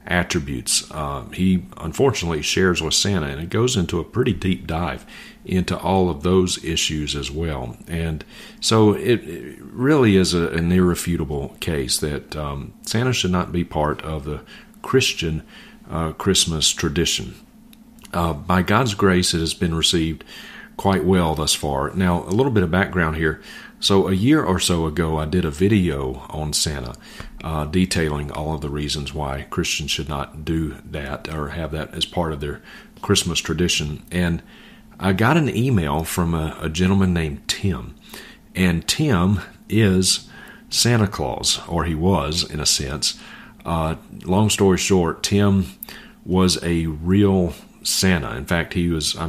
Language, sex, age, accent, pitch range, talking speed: English, male, 40-59, American, 80-95 Hz, 160 wpm